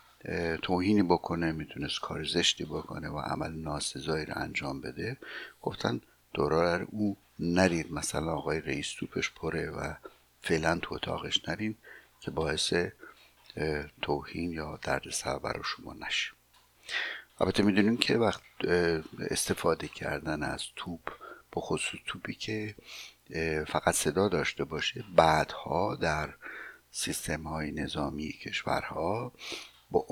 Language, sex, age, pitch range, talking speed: Persian, male, 60-79, 75-85 Hz, 115 wpm